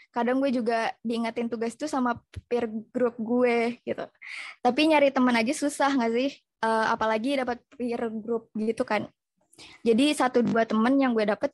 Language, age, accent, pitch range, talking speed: Indonesian, 20-39, native, 230-270 Hz, 165 wpm